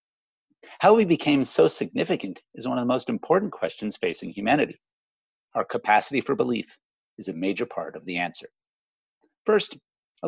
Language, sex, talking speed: English, male, 160 wpm